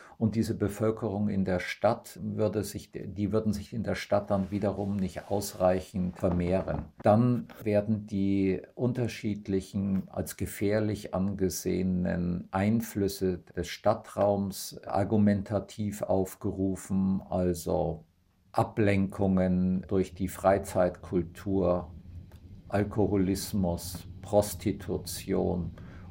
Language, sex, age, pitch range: German, male, 50-69, 95-105 Hz